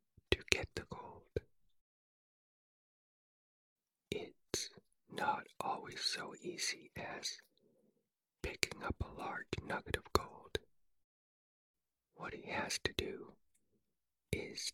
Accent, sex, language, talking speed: American, male, English, 90 wpm